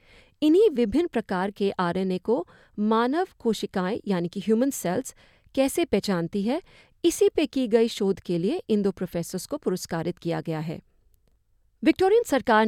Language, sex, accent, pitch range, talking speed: Hindi, female, native, 180-260 Hz, 150 wpm